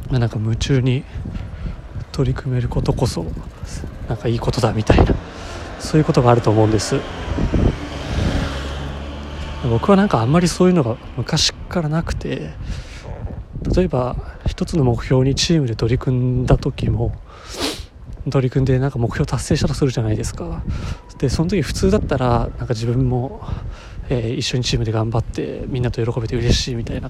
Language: Japanese